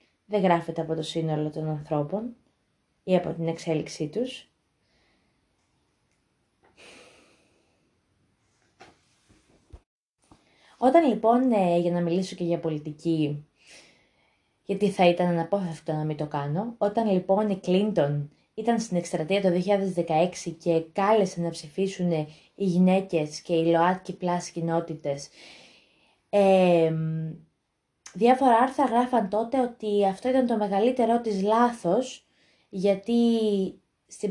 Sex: female